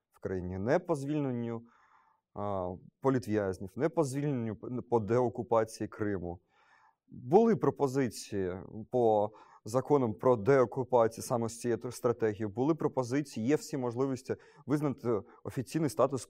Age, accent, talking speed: 30-49, native, 120 wpm